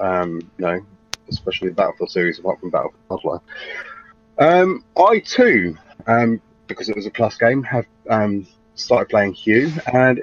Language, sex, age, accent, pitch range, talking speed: English, male, 30-49, British, 95-115 Hz, 160 wpm